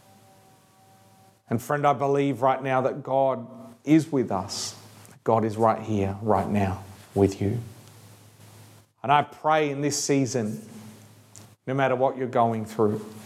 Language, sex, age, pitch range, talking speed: English, male, 40-59, 110-125 Hz, 140 wpm